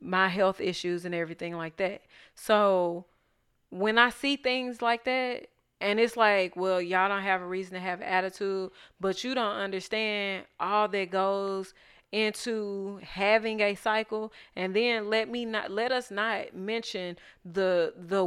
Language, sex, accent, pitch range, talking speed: English, female, American, 190-235 Hz, 160 wpm